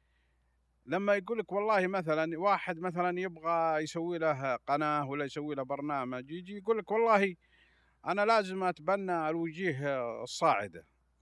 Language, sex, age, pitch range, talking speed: Arabic, male, 50-69, 130-190 Hz, 130 wpm